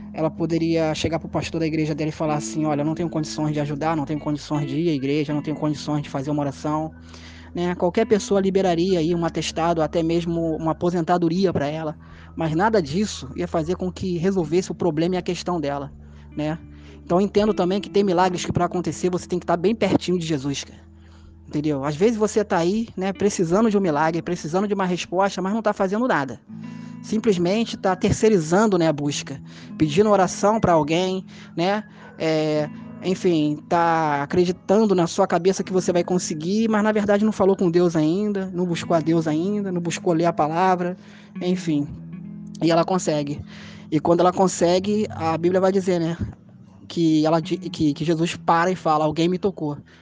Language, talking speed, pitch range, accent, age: Portuguese, 195 wpm, 155-190 Hz, Brazilian, 20-39